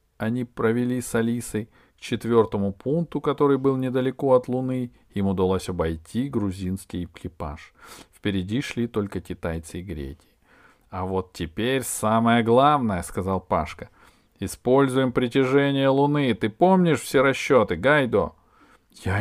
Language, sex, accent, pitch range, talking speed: Russian, male, native, 110-135 Hz, 130 wpm